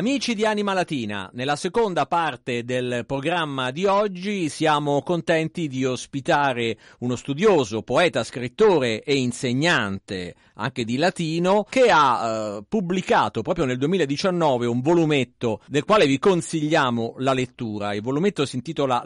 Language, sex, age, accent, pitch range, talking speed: Italian, male, 50-69, native, 120-165 Hz, 135 wpm